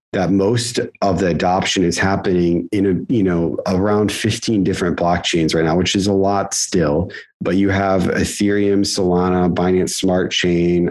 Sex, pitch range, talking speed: male, 90-100 Hz, 165 wpm